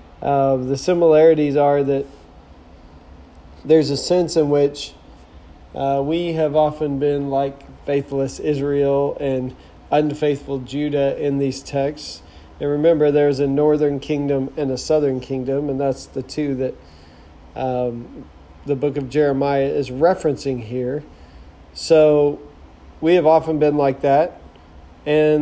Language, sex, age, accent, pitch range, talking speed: English, male, 40-59, American, 120-150 Hz, 130 wpm